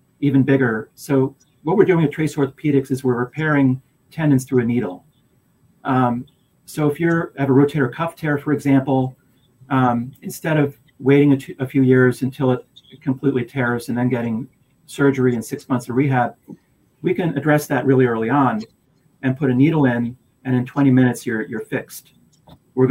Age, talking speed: 40-59, 180 wpm